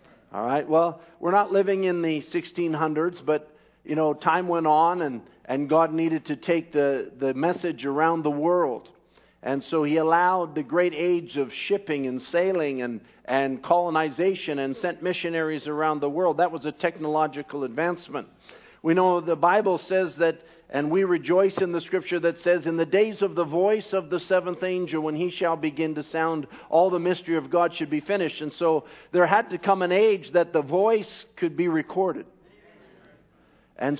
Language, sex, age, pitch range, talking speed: English, male, 50-69, 155-195 Hz, 185 wpm